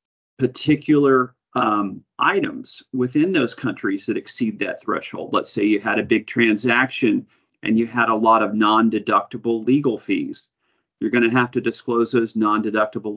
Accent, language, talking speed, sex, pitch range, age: American, English, 155 wpm, male, 110-135 Hz, 40-59